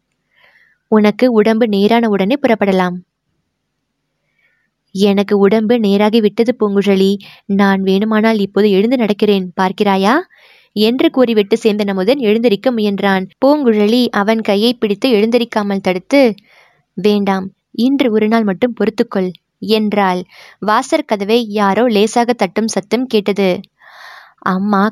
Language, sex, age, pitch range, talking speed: Tamil, female, 20-39, 195-230 Hz, 105 wpm